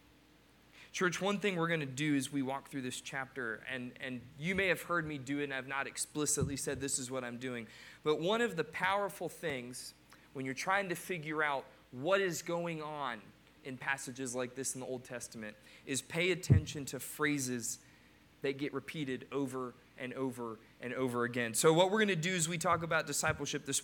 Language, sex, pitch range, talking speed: English, male, 135-170 Hz, 205 wpm